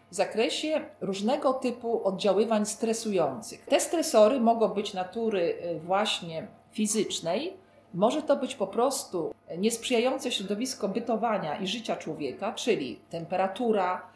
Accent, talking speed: native, 110 wpm